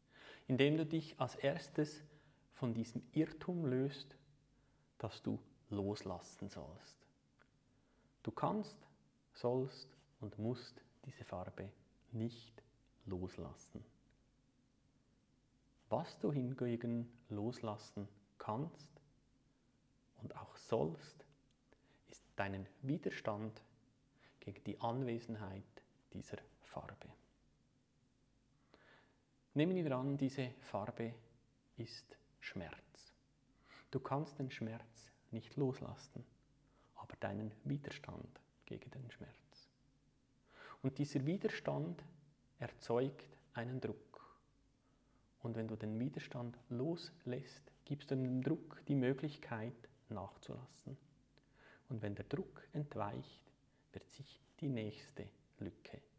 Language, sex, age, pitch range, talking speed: German, male, 30-49, 115-140 Hz, 90 wpm